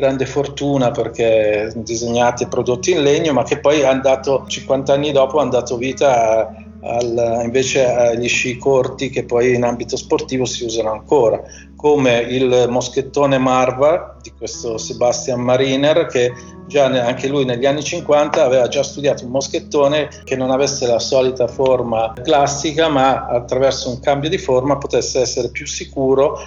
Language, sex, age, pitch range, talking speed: Italian, male, 40-59, 120-145 Hz, 160 wpm